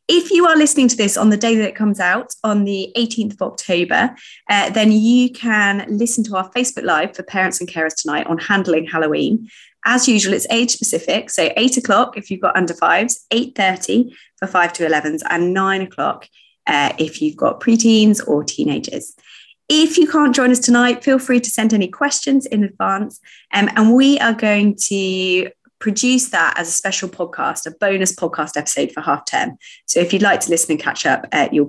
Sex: female